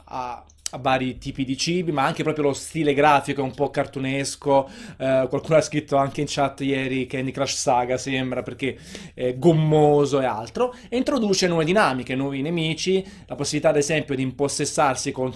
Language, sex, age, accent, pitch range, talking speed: Italian, male, 30-49, native, 130-160 Hz, 180 wpm